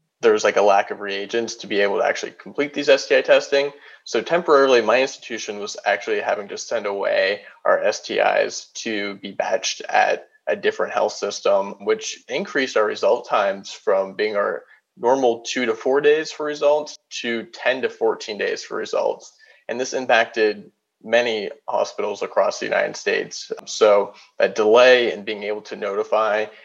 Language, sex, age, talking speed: English, male, 20-39, 170 wpm